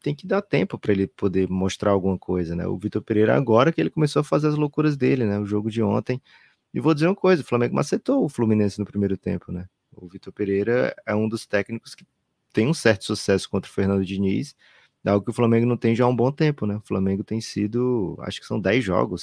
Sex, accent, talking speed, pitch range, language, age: male, Brazilian, 245 wpm, 95-115 Hz, Portuguese, 20-39